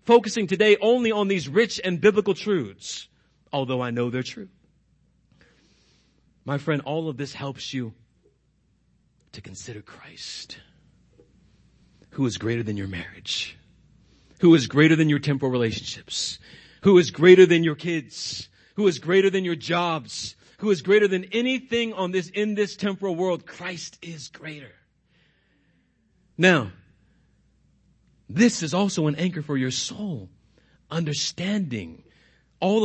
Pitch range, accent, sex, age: 130-190 Hz, American, male, 40-59